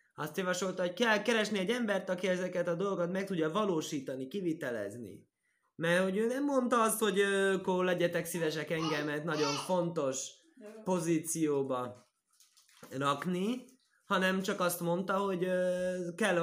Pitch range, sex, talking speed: 140-200 Hz, male, 135 wpm